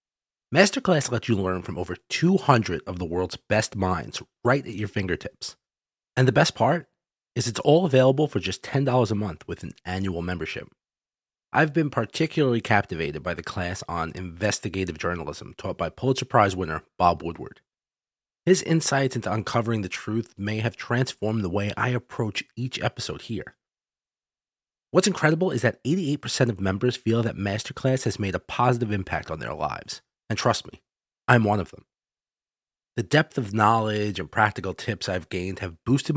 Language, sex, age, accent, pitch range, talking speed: English, male, 30-49, American, 95-130 Hz, 170 wpm